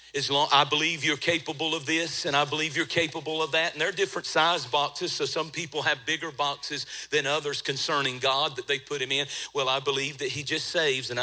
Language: English